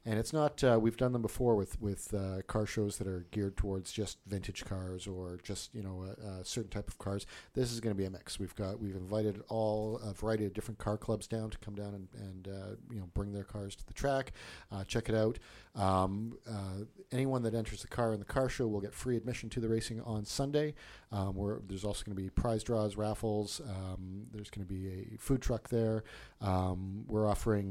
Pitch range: 100-115 Hz